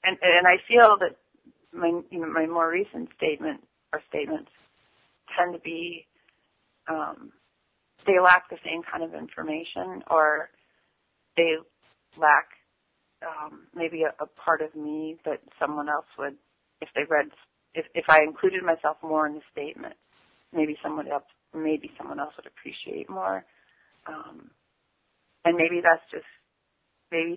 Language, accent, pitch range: English, American, 155-180 Hz